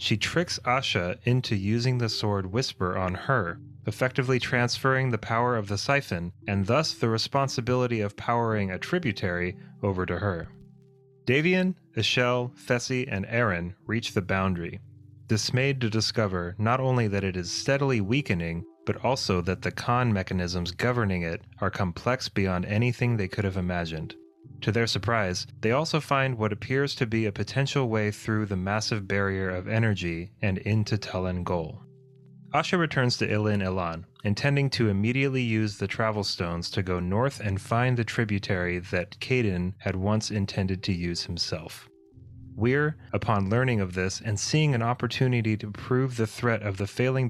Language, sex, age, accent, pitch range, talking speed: English, male, 30-49, American, 95-125 Hz, 160 wpm